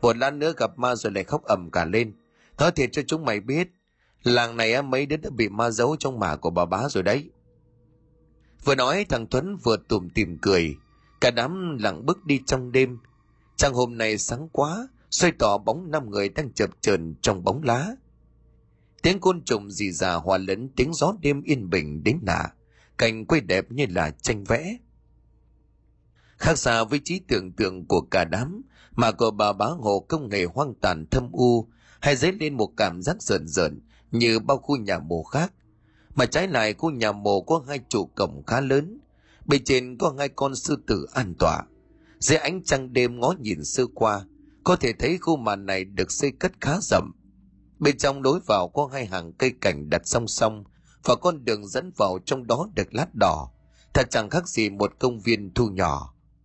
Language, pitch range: Vietnamese, 100-145 Hz